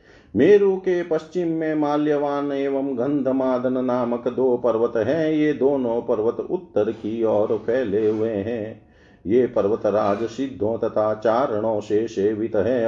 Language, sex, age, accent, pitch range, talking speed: Hindi, male, 50-69, native, 105-140 Hz, 135 wpm